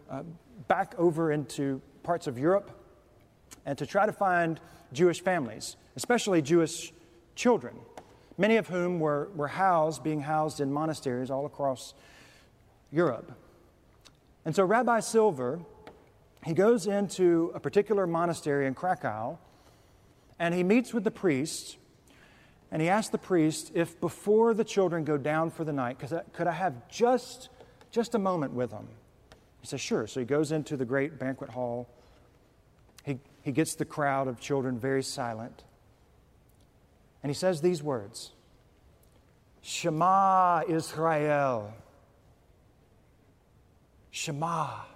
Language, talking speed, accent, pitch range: English, 135 wpm, American, 135-175 Hz